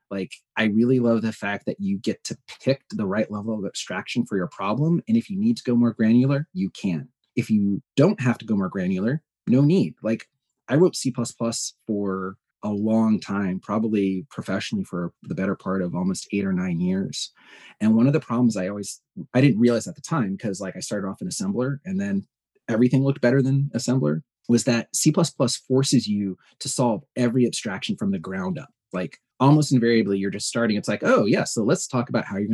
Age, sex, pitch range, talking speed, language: 30-49, male, 105-150 Hz, 210 wpm, English